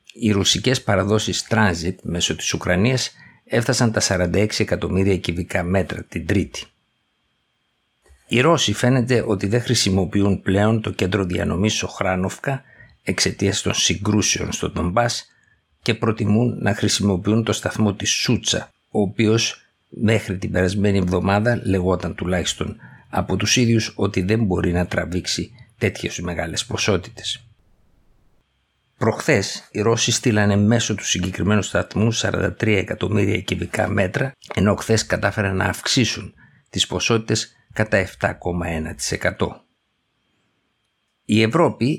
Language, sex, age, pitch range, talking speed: Greek, male, 60-79, 90-115 Hz, 115 wpm